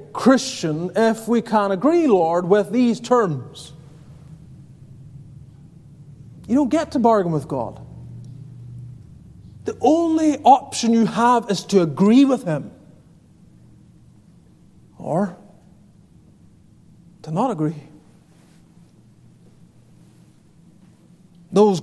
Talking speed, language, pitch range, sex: 85 wpm, English, 160-235 Hz, male